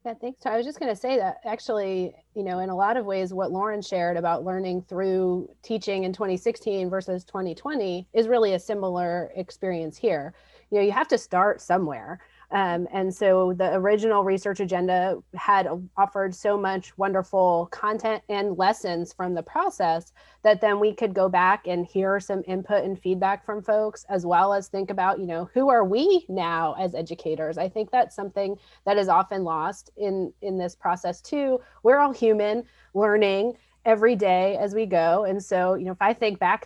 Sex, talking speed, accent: female, 190 wpm, American